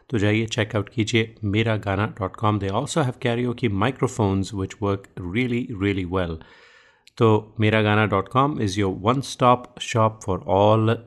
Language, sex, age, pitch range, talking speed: Hindi, male, 30-49, 95-120 Hz, 130 wpm